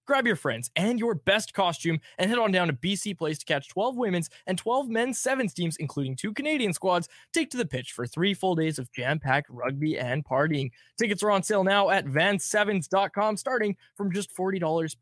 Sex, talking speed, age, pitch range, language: male, 210 wpm, 20-39, 150-210 Hz, English